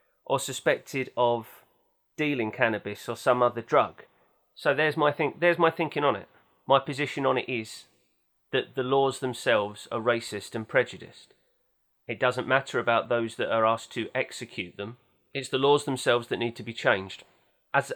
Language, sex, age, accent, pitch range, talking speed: English, male, 30-49, British, 110-135 Hz, 175 wpm